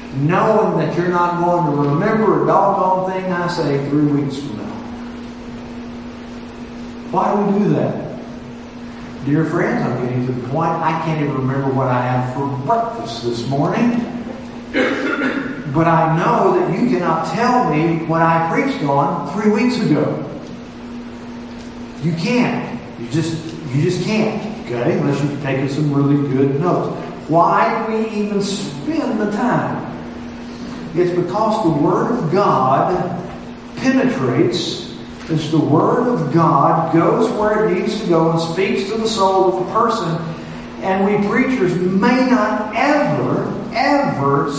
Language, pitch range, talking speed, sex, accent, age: English, 145-220 Hz, 145 wpm, male, American, 50-69